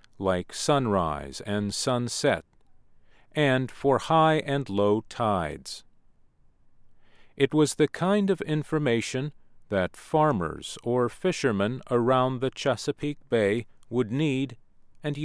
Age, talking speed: 40-59, 105 wpm